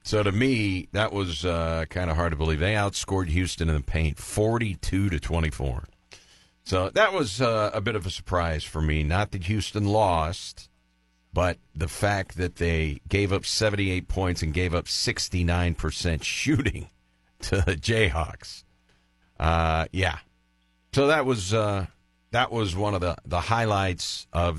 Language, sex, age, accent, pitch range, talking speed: English, male, 50-69, American, 80-105 Hz, 160 wpm